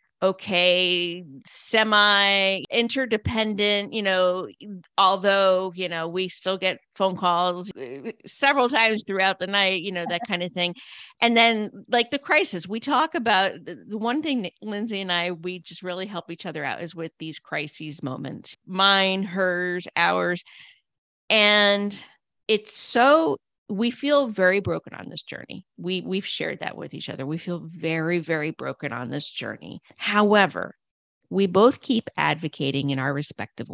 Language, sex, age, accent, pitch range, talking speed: English, female, 40-59, American, 170-215 Hz, 155 wpm